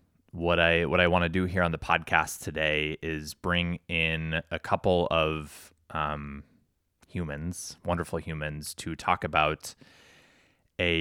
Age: 20-39